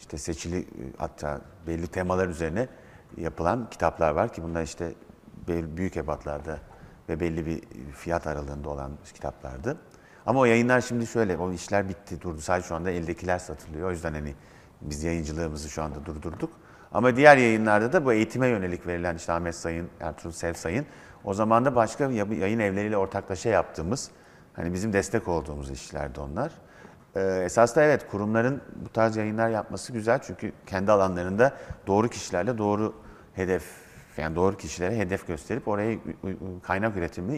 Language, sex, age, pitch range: Turkish, male, 50-69, 85-110 Hz